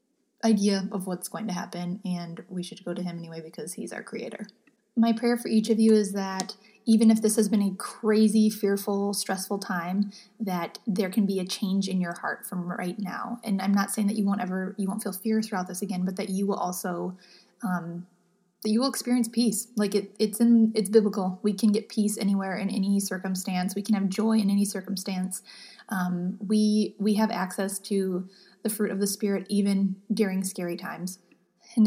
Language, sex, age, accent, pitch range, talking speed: English, female, 20-39, American, 190-215 Hz, 205 wpm